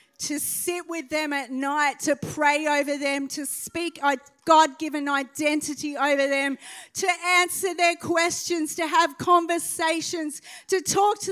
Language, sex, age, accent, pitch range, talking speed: English, female, 30-49, Australian, 290-340 Hz, 145 wpm